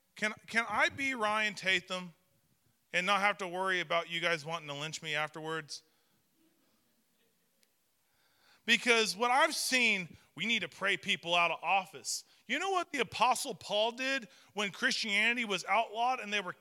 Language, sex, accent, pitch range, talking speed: English, male, American, 200-270 Hz, 165 wpm